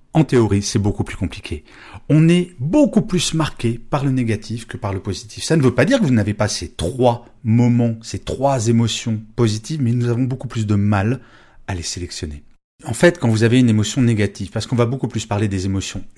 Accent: French